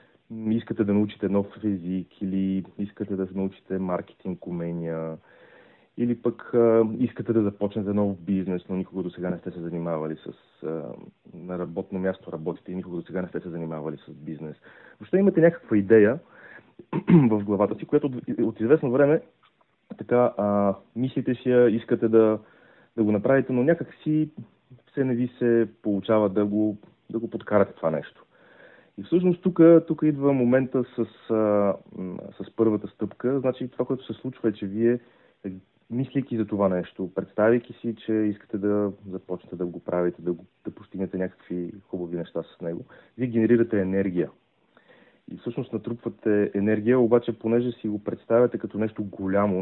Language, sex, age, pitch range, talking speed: Bulgarian, male, 30-49, 95-120 Hz, 160 wpm